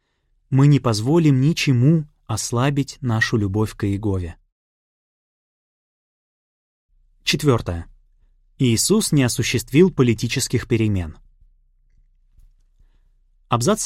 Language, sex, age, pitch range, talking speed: Russian, male, 20-39, 100-145 Hz, 70 wpm